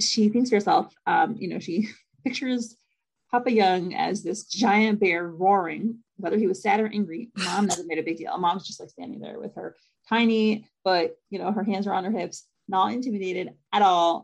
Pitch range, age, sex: 185-235 Hz, 30-49, female